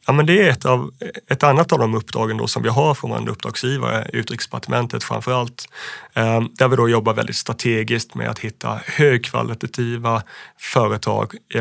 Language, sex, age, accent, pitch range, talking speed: Swedish, male, 30-49, native, 115-130 Hz, 150 wpm